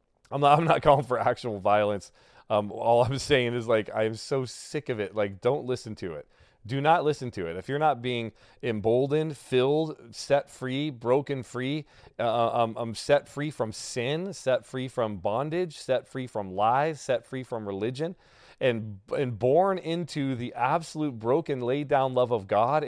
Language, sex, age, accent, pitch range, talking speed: English, male, 30-49, American, 110-145 Hz, 185 wpm